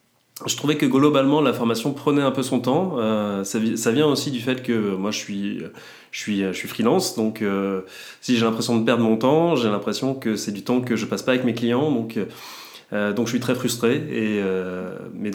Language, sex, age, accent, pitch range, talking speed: French, male, 30-49, French, 110-135 Hz, 230 wpm